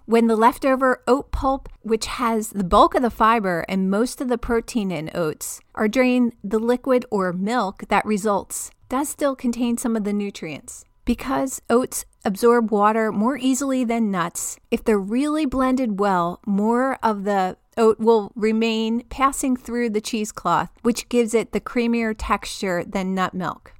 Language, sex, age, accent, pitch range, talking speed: English, female, 40-59, American, 205-250 Hz, 165 wpm